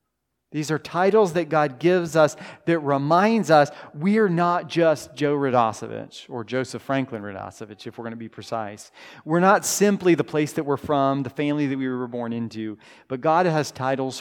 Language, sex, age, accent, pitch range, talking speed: English, male, 40-59, American, 125-170 Hz, 190 wpm